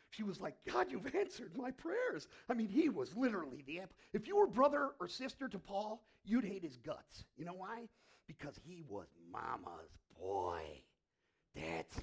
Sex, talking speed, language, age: male, 175 wpm, English, 40-59